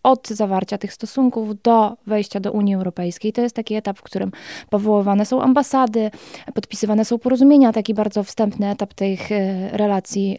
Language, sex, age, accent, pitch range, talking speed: Polish, female, 20-39, native, 205-235 Hz, 155 wpm